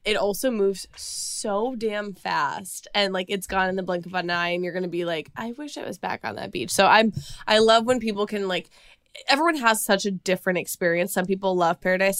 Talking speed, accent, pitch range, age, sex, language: 235 wpm, American, 185-225 Hz, 20-39, female, English